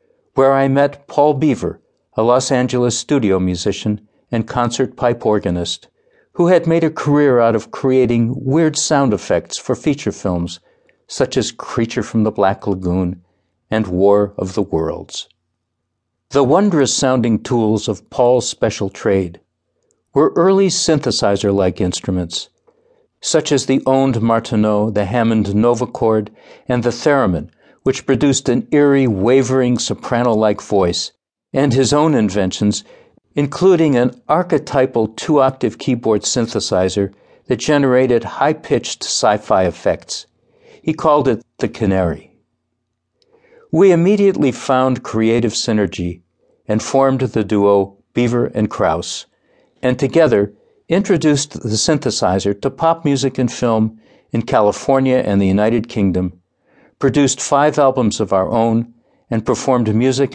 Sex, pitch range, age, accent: male, 105-135 Hz, 60-79, American